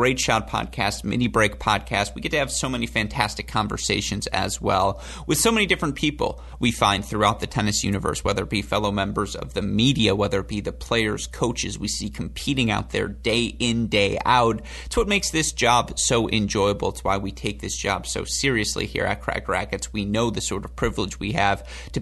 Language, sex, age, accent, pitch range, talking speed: English, male, 30-49, American, 100-130 Hz, 215 wpm